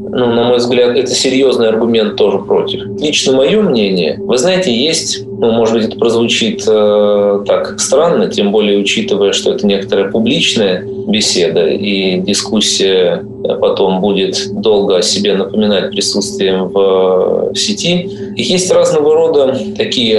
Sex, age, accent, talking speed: male, 20-39, native, 140 wpm